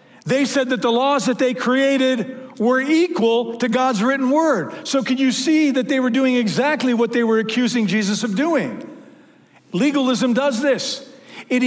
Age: 50-69